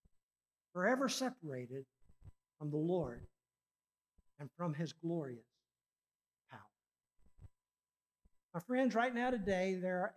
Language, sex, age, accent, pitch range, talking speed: English, male, 60-79, American, 165-240 Hz, 100 wpm